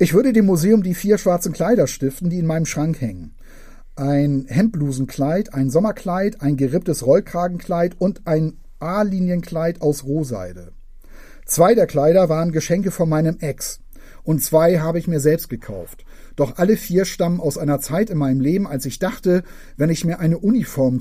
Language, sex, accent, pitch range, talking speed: German, male, German, 145-190 Hz, 170 wpm